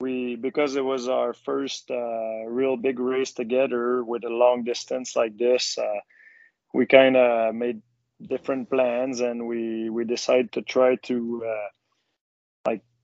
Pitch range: 115-125 Hz